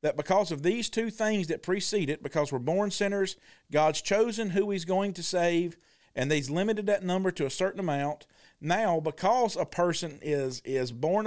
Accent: American